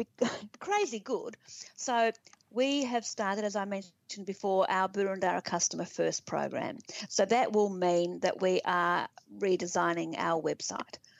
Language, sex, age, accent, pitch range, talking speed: English, female, 50-69, Australian, 180-215 Hz, 135 wpm